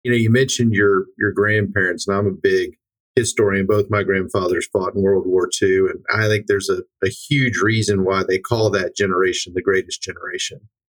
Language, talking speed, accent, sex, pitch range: English, 200 wpm, American, male, 100-135 Hz